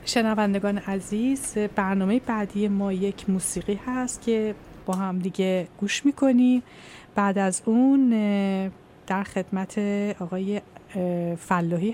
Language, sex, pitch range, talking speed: Persian, female, 190-230 Hz, 105 wpm